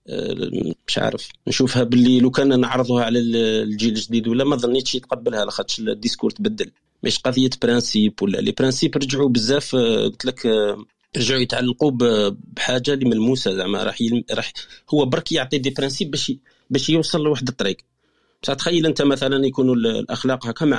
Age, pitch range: 40-59, 115-145 Hz